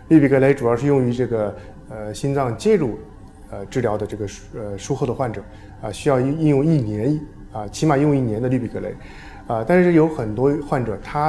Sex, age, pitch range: male, 20-39, 105-145 Hz